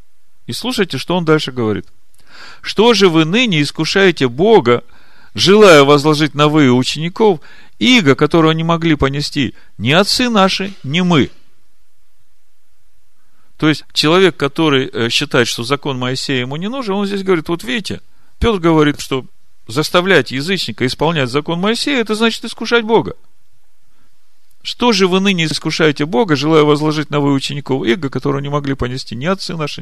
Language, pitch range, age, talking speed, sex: Russian, 120-170 Hz, 40-59, 150 wpm, male